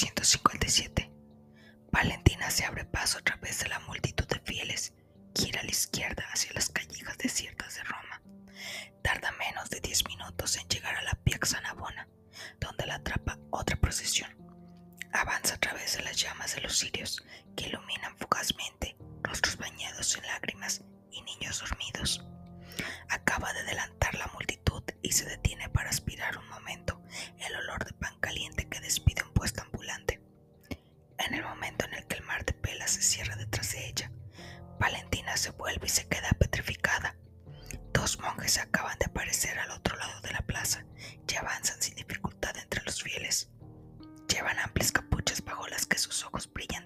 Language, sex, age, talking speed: Spanish, female, 20-39, 165 wpm